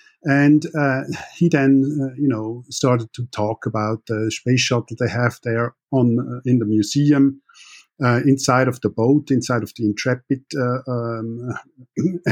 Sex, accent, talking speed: male, German, 155 wpm